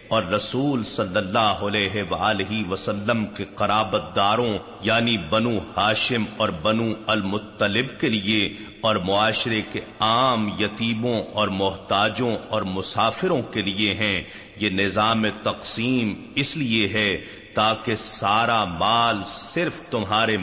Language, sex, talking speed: Urdu, male, 120 wpm